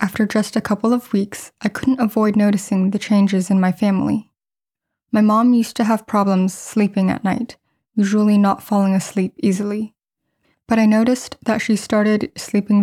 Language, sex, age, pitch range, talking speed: English, female, 10-29, 195-220 Hz, 170 wpm